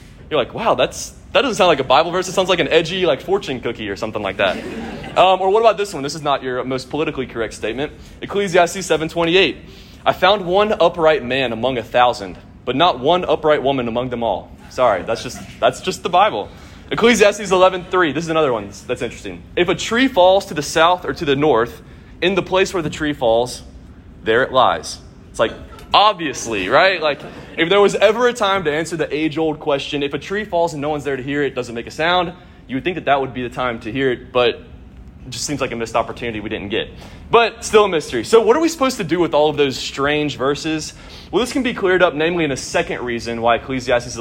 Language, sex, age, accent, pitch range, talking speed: English, male, 20-39, American, 130-185 Hz, 240 wpm